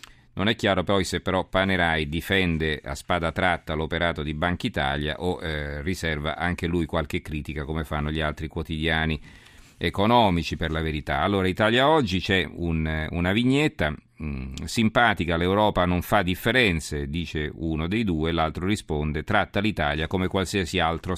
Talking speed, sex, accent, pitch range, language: 150 wpm, male, native, 85-105 Hz, Italian